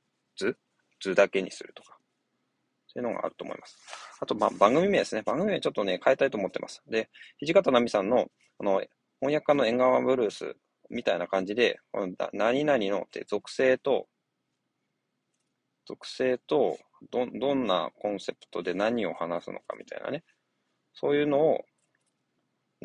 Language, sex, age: Japanese, male, 20-39